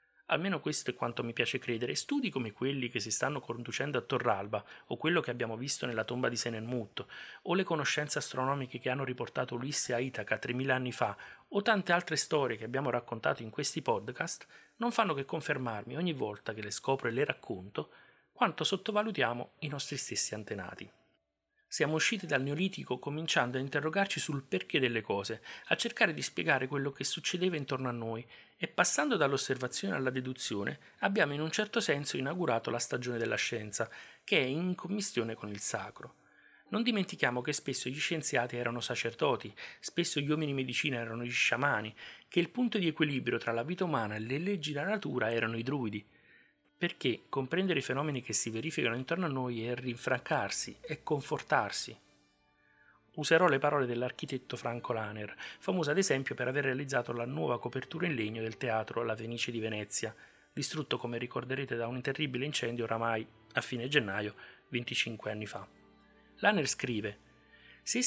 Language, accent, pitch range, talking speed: Italian, native, 115-150 Hz, 170 wpm